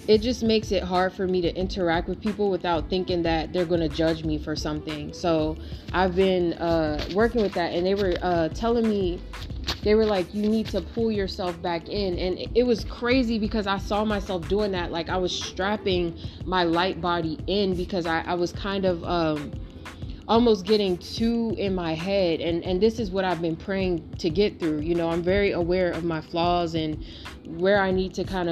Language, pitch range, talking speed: English, 170-205 Hz, 210 wpm